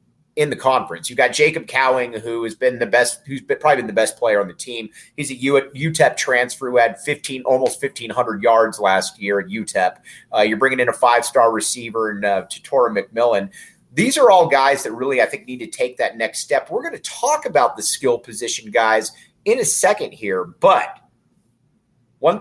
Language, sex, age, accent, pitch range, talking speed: English, male, 30-49, American, 125-190 Hz, 205 wpm